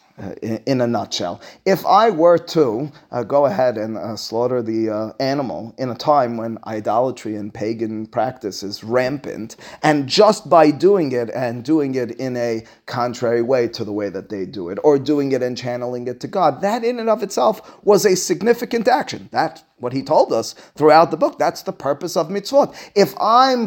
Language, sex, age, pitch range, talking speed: English, male, 30-49, 130-210 Hz, 200 wpm